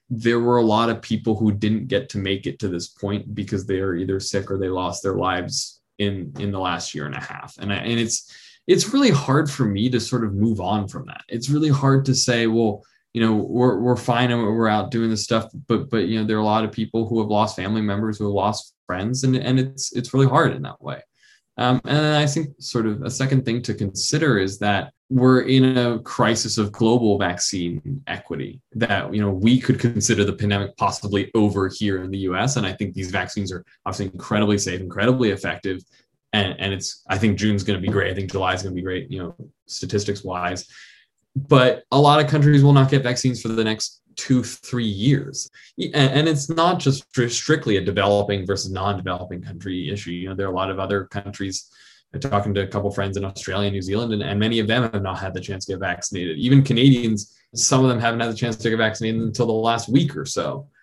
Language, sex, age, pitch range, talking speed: English, male, 20-39, 100-125 Hz, 235 wpm